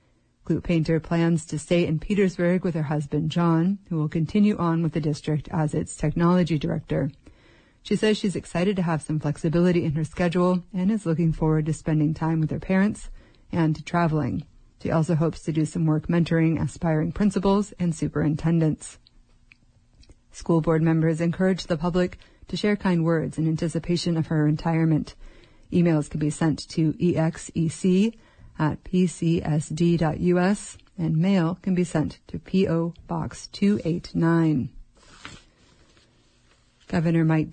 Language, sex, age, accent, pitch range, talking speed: English, female, 30-49, American, 155-180 Hz, 145 wpm